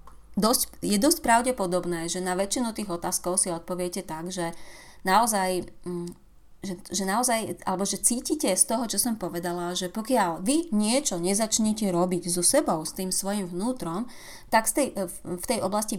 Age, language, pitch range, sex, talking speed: 30-49, Slovak, 180-220 Hz, female, 165 wpm